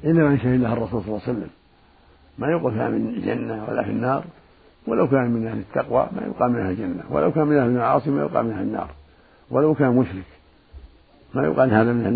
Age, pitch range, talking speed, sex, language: 60-79, 80-130 Hz, 215 wpm, male, Arabic